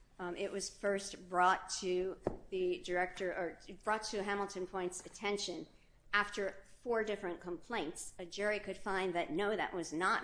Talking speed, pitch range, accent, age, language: 160 wpm, 175-210 Hz, American, 50-69, English